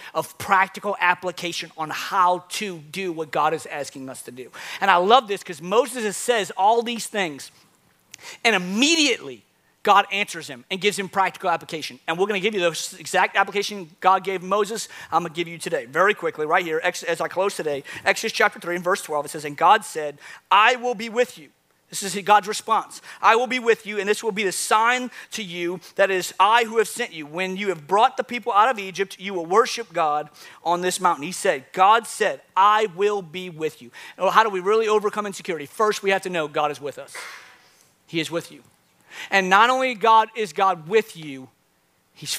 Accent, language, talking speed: American, English, 215 wpm